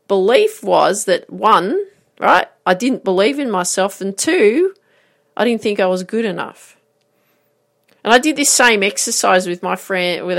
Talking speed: 170 wpm